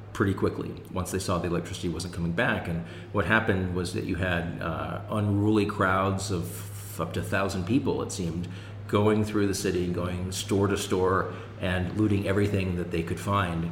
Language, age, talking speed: English, 40-59, 190 wpm